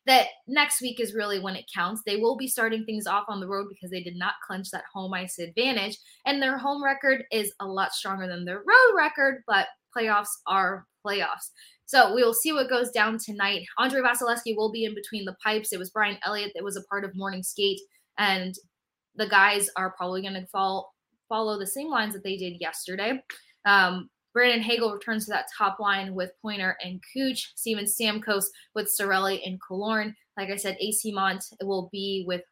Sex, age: female, 20-39